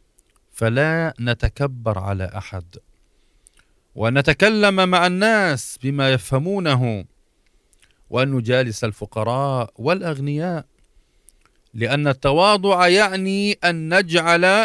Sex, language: male, Arabic